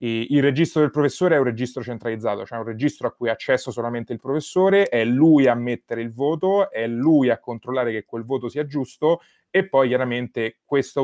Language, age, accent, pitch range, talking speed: Italian, 30-49, native, 120-150 Hz, 200 wpm